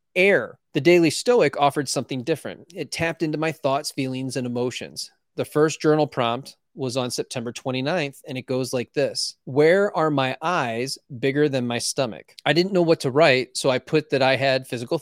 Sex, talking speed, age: male, 195 wpm, 30-49